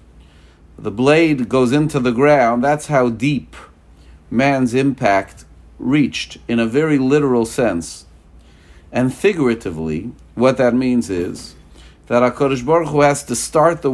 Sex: male